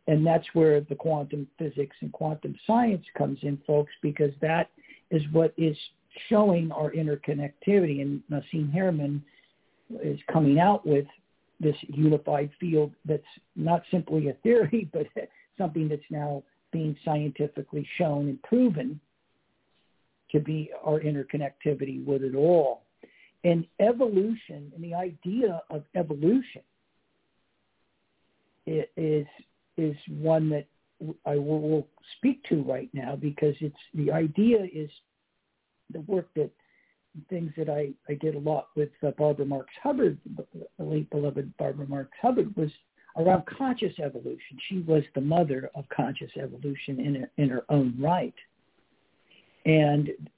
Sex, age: male, 50-69